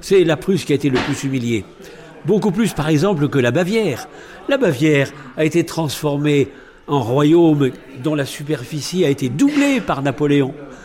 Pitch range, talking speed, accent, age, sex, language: 140-190 Hz, 170 wpm, French, 60-79, male, French